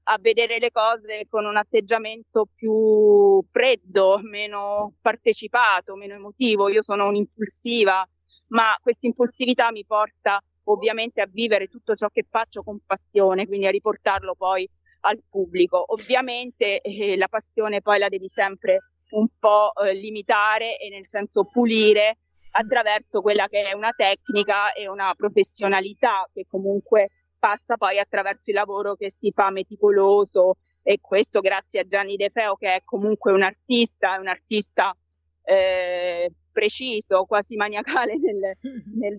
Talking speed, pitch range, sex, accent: 140 wpm, 195-225 Hz, female, native